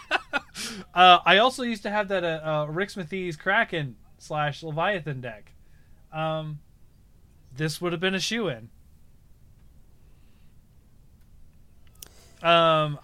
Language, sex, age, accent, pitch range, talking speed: English, male, 20-39, American, 115-180 Hz, 110 wpm